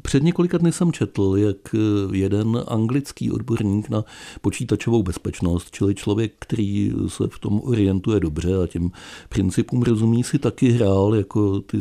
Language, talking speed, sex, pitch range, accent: Czech, 145 wpm, male, 100-125 Hz, native